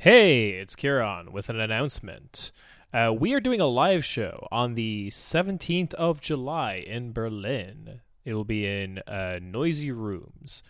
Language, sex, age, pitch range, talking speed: English, male, 20-39, 100-130 Hz, 150 wpm